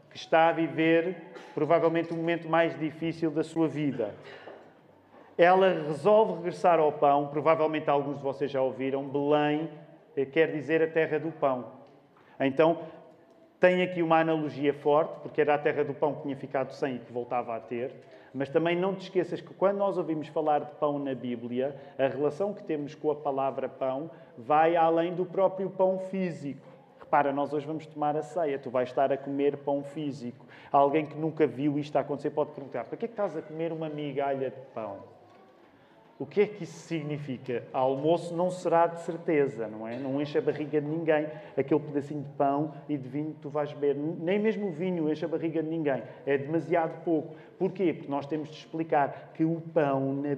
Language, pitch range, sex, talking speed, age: Portuguese, 140-165 Hz, male, 195 wpm, 40-59